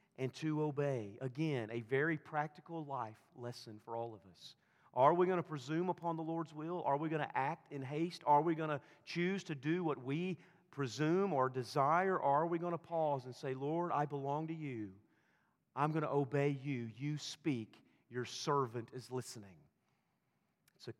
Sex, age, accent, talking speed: male, 40-59, American, 185 wpm